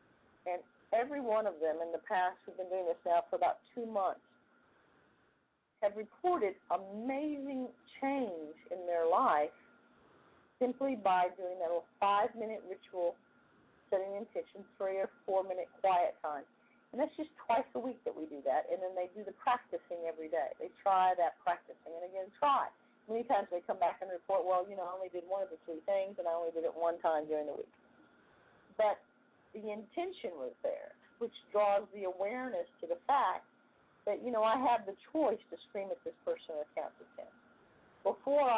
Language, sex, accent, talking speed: English, female, American, 190 wpm